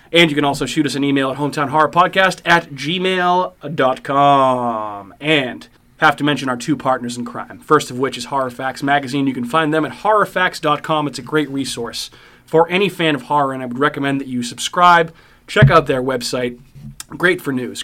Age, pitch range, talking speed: 30-49, 130-155 Hz, 190 wpm